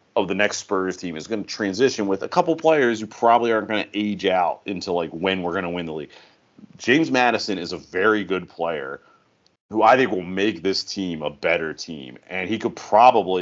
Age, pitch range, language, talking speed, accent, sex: 30-49, 90-110 Hz, English, 225 wpm, American, male